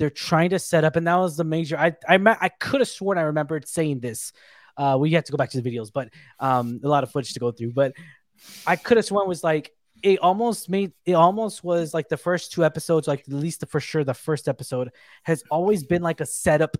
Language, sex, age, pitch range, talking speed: English, male, 20-39, 145-180 Hz, 250 wpm